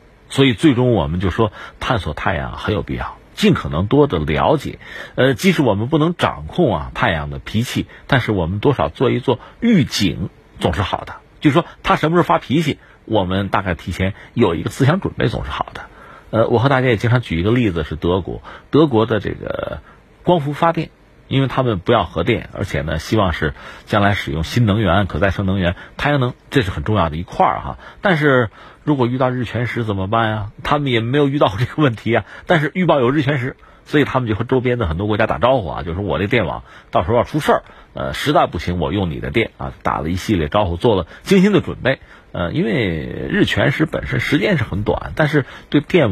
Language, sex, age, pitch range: Chinese, male, 50-69, 95-145 Hz